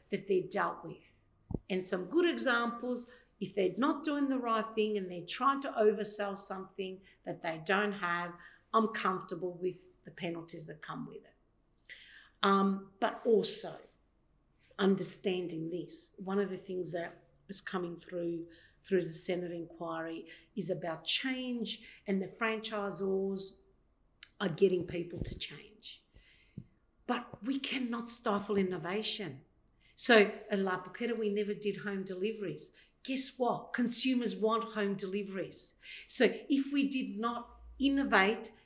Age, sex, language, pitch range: 50-69, female, English, 185-225 Hz